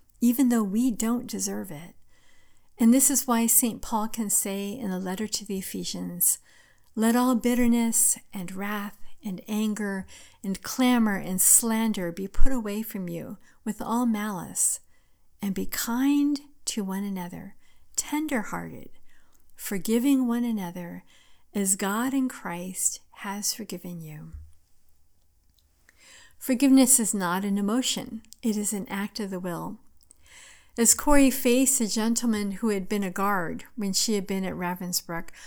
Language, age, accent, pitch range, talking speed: English, 50-69, American, 190-240 Hz, 140 wpm